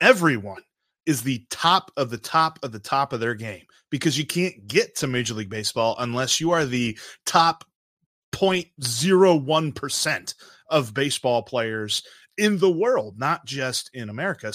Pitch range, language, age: 125-165 Hz, English, 30-49